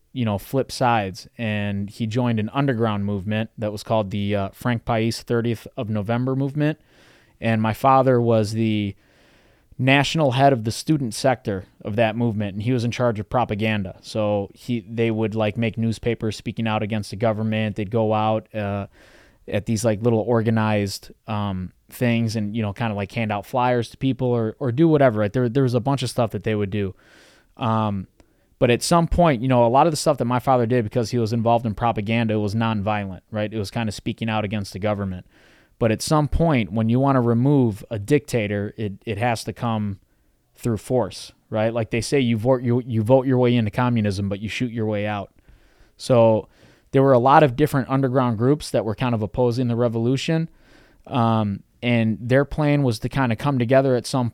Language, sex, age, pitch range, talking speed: English, male, 20-39, 105-125 Hz, 210 wpm